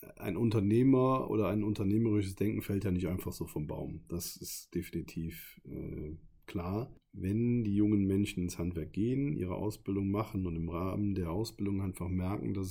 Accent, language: German, German